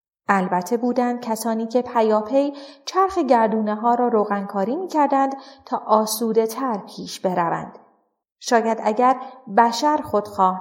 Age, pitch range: 30-49, 205-250 Hz